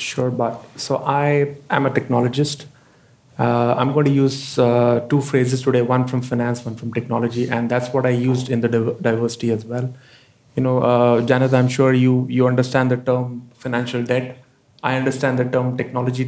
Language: English